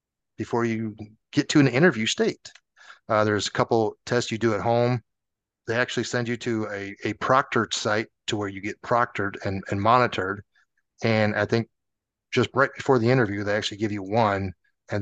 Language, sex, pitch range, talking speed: English, male, 100-120 Hz, 190 wpm